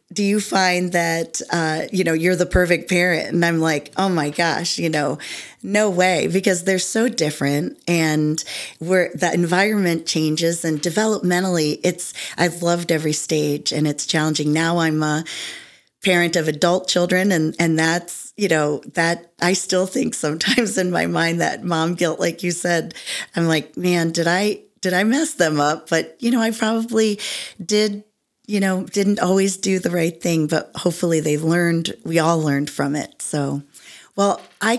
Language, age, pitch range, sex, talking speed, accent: English, 40-59, 160-195 Hz, female, 175 wpm, American